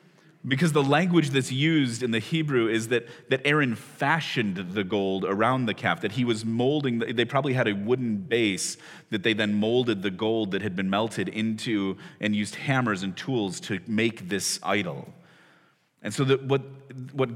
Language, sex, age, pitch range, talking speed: English, male, 30-49, 105-140 Hz, 185 wpm